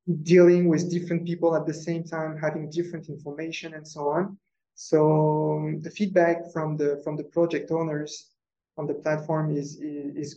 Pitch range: 145-170 Hz